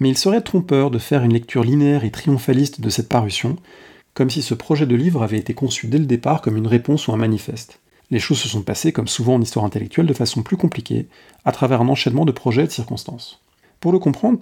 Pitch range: 115-145 Hz